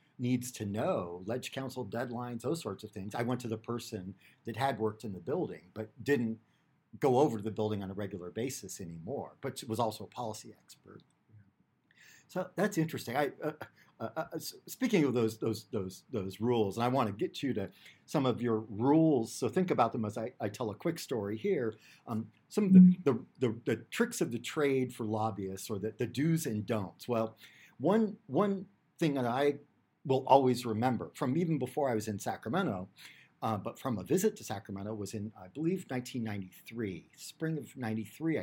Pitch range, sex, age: 110-145 Hz, male, 50-69